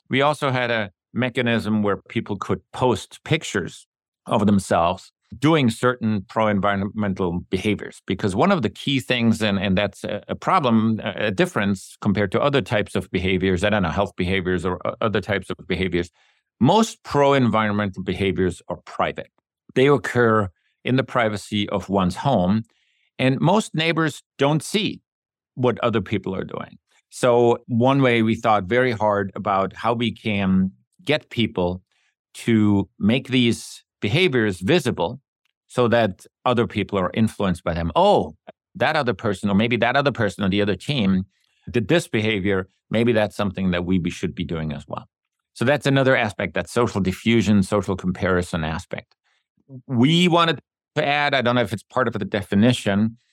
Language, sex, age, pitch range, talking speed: English, male, 50-69, 95-125 Hz, 160 wpm